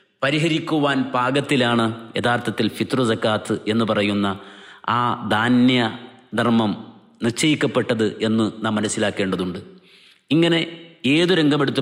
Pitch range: 105-125 Hz